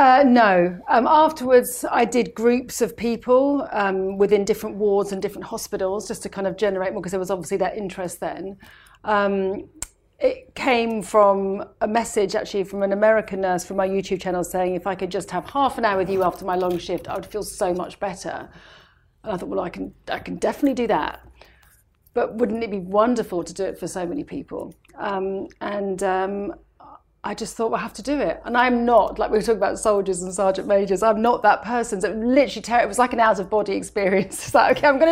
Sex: female